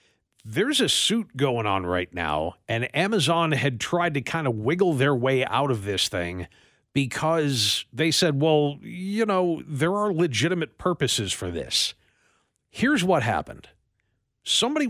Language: English